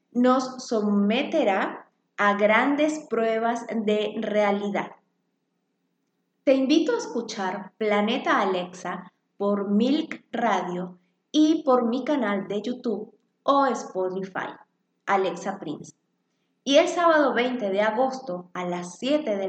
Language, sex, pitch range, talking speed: Spanish, female, 195-270 Hz, 110 wpm